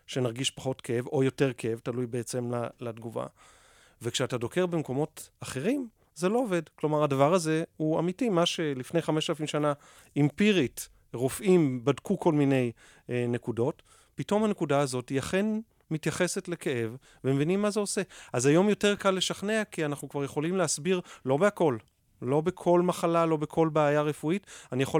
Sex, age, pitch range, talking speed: male, 30-49, 130-175 Hz, 155 wpm